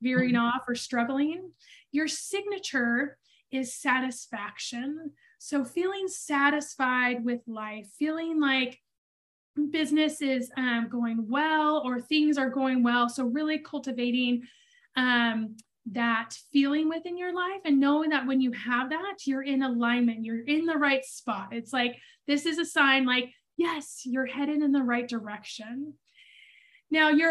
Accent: American